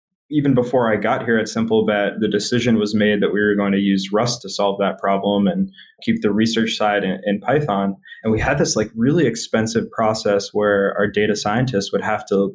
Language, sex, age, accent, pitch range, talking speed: English, male, 20-39, American, 105-120 Hz, 215 wpm